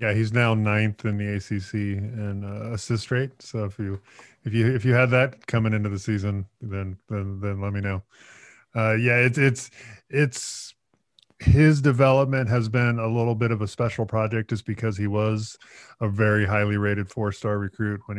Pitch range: 100-115 Hz